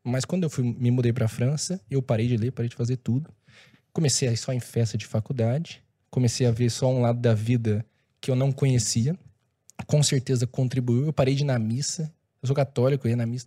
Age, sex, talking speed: 20-39, male, 235 wpm